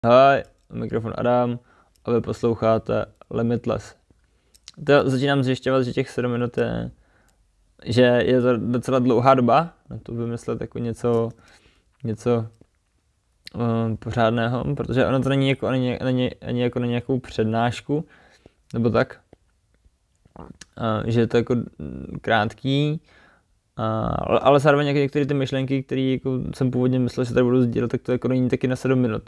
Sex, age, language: male, 20-39, Czech